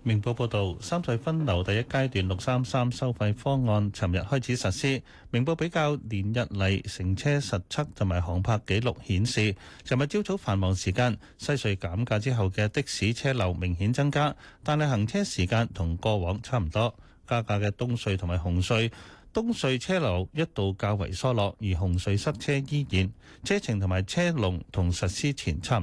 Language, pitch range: Chinese, 95-130 Hz